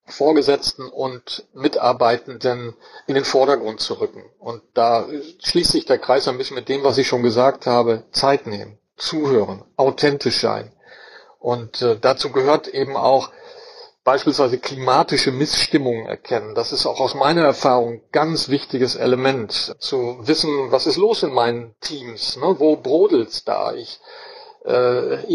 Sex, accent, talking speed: male, German, 145 wpm